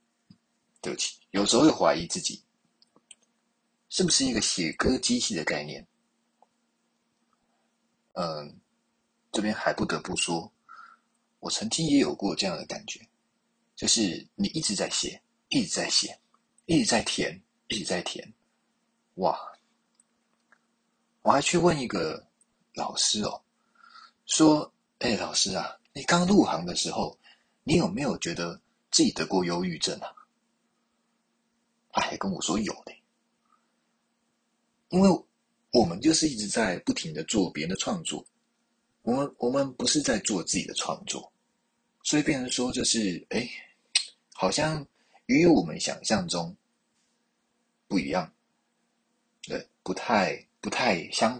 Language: Chinese